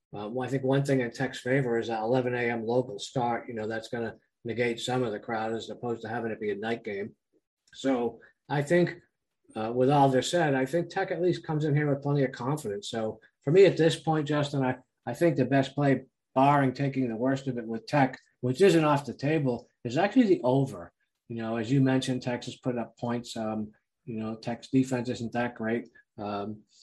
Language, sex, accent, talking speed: English, male, American, 225 wpm